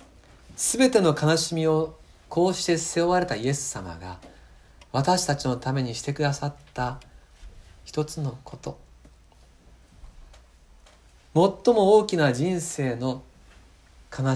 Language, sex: Japanese, male